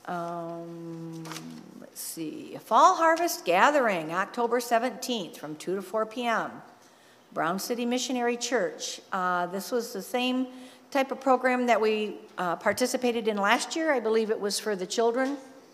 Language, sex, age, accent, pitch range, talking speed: English, female, 50-69, American, 180-245 Hz, 150 wpm